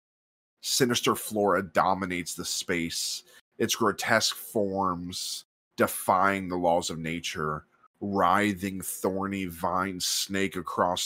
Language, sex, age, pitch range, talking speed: English, male, 20-39, 85-95 Hz, 100 wpm